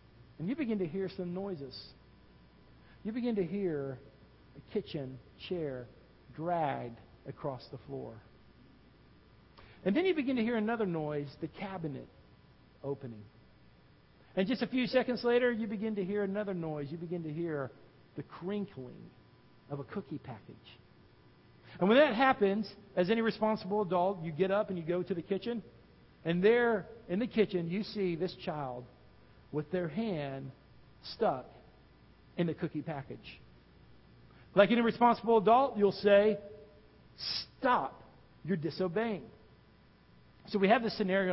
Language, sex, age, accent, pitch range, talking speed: English, male, 60-79, American, 135-200 Hz, 145 wpm